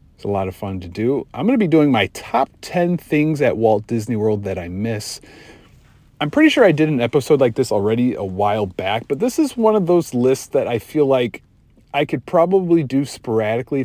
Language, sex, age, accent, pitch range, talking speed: English, male, 40-59, American, 105-135 Hz, 225 wpm